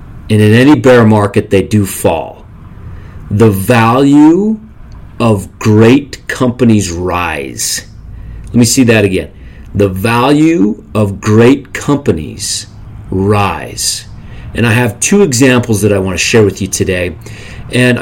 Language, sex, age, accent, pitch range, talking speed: English, male, 40-59, American, 105-125 Hz, 130 wpm